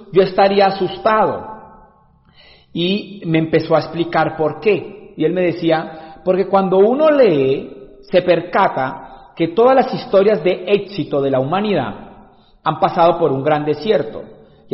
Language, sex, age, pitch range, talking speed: Spanish, male, 50-69, 155-195 Hz, 145 wpm